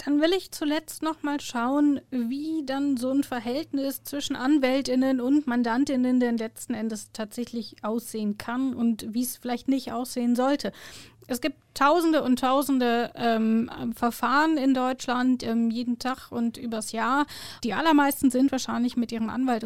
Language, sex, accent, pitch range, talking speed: German, female, German, 245-290 Hz, 155 wpm